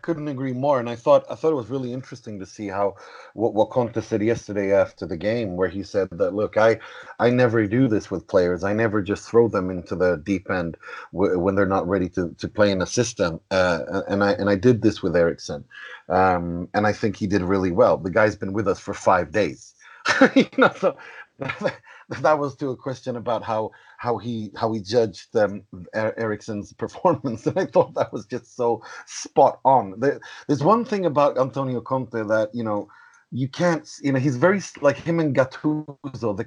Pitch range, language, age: 105-140 Hz, English, 30-49